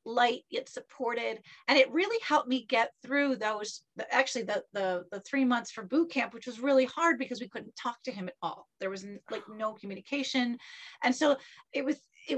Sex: female